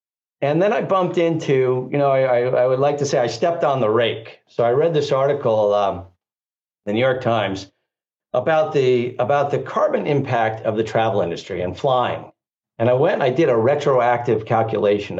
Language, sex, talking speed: English, male, 195 wpm